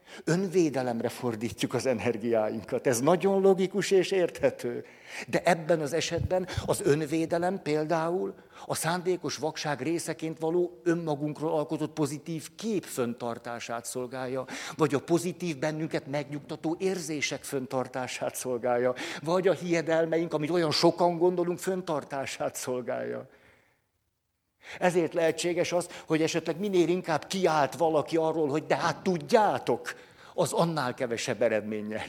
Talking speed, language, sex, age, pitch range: 115 wpm, Hungarian, male, 60-79, 125-165 Hz